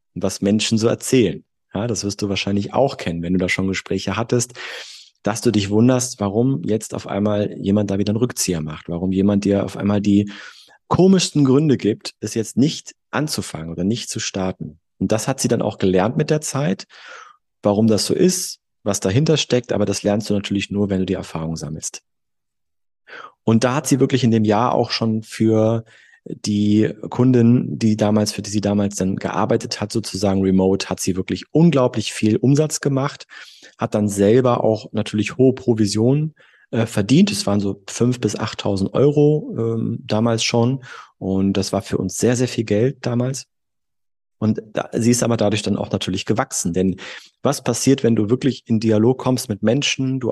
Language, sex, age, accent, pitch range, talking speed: German, male, 30-49, German, 100-125 Hz, 185 wpm